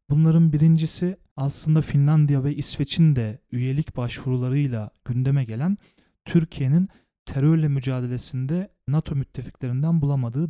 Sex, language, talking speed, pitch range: male, Turkish, 95 wpm, 130-155 Hz